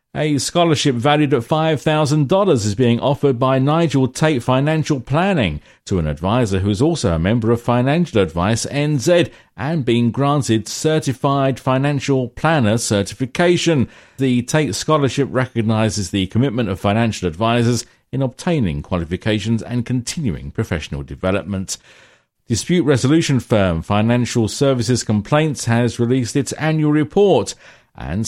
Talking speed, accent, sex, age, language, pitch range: 125 wpm, British, male, 50-69, English, 105-140 Hz